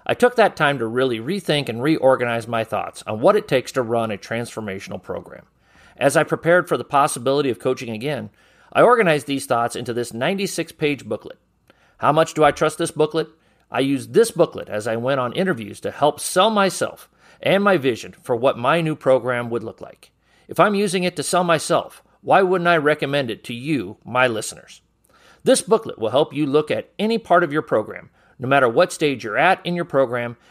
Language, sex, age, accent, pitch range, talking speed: English, male, 40-59, American, 120-175 Hz, 205 wpm